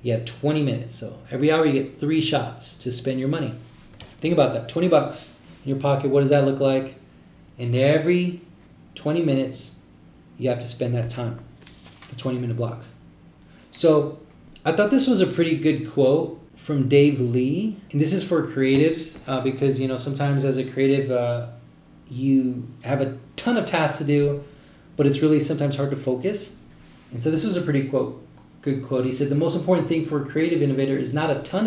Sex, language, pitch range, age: male, English, 130-155 Hz, 20-39